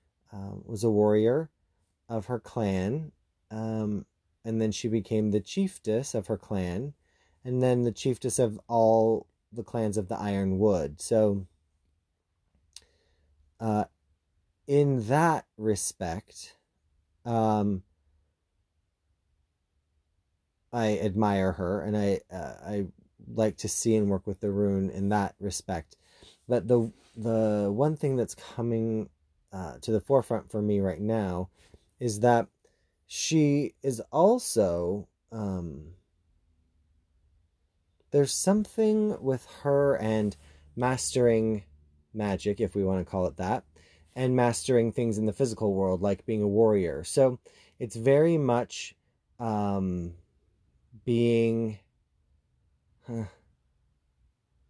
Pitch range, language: 85-115 Hz, English